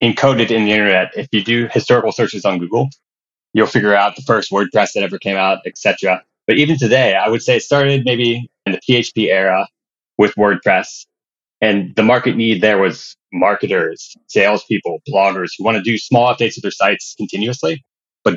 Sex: male